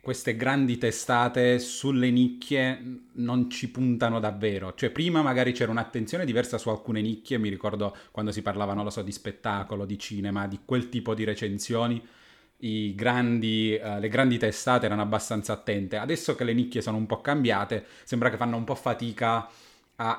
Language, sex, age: Italian, male, 30-49